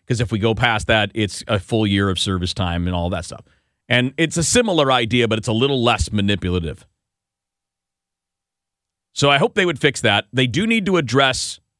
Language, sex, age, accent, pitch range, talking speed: English, male, 40-59, American, 100-140 Hz, 205 wpm